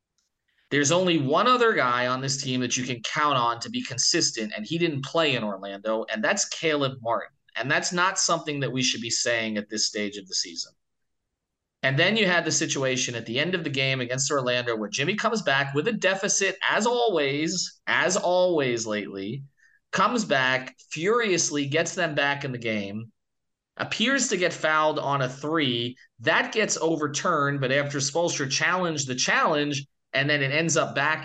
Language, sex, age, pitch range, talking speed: English, male, 30-49, 125-170 Hz, 190 wpm